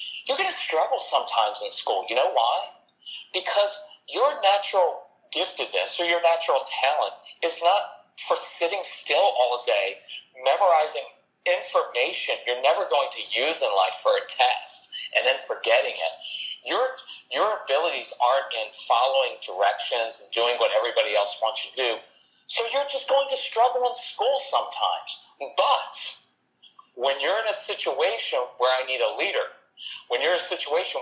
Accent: American